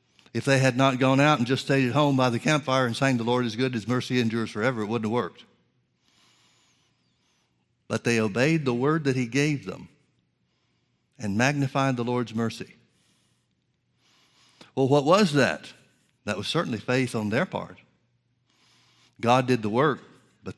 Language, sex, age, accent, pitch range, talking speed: English, male, 60-79, American, 115-130 Hz, 170 wpm